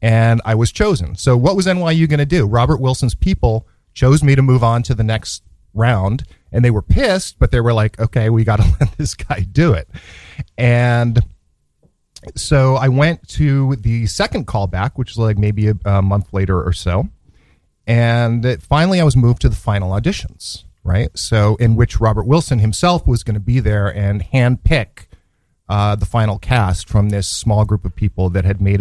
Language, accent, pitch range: English, American, 95-125 Hz